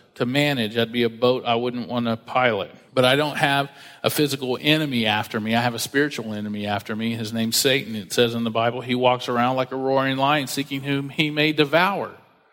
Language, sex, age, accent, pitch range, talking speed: English, male, 50-69, American, 120-155 Hz, 225 wpm